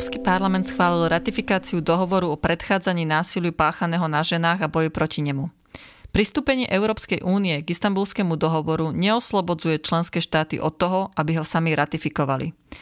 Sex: female